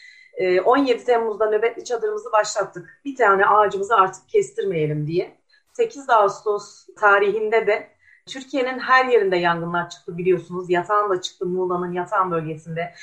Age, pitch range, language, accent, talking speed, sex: 30-49, 195-265 Hz, Turkish, native, 125 wpm, female